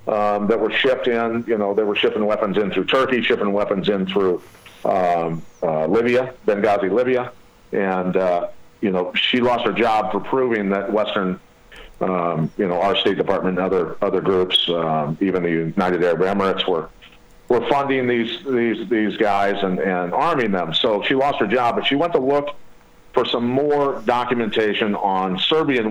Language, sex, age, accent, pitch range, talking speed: English, male, 50-69, American, 90-115 Hz, 180 wpm